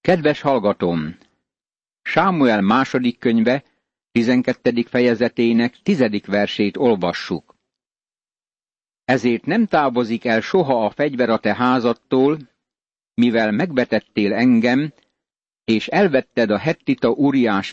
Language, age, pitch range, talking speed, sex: Hungarian, 60-79, 115-140 Hz, 95 wpm, male